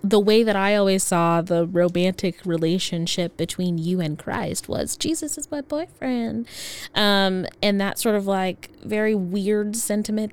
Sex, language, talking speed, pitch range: female, English, 155 wpm, 175-220 Hz